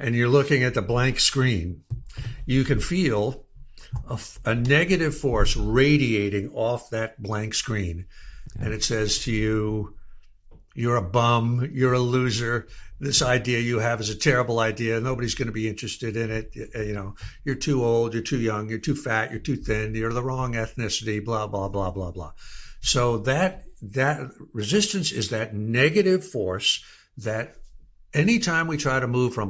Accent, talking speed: American, 170 wpm